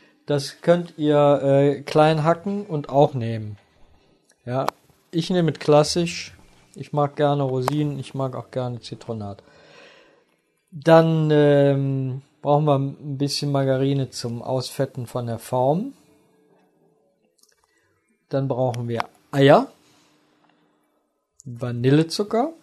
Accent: German